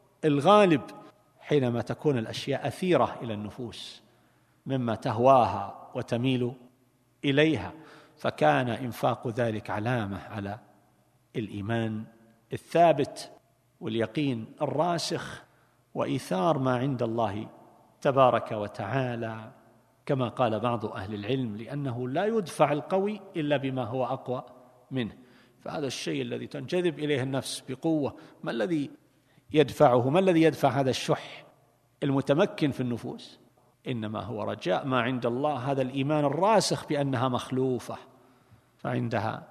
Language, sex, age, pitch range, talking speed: Arabic, male, 50-69, 115-150 Hz, 105 wpm